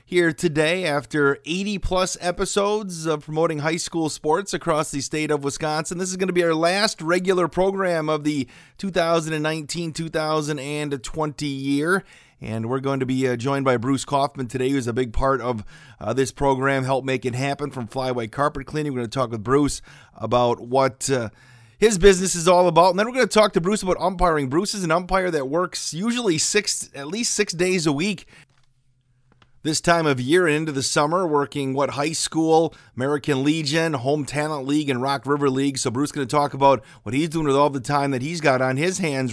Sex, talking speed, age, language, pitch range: male, 200 wpm, 30-49, English, 130-170 Hz